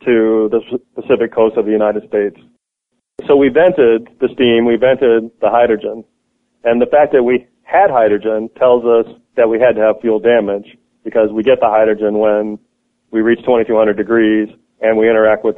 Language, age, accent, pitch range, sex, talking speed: English, 40-59, American, 105-115 Hz, male, 180 wpm